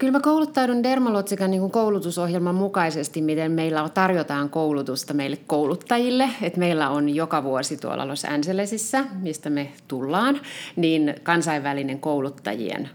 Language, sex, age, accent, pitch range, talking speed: Finnish, female, 30-49, native, 145-195 Hz, 110 wpm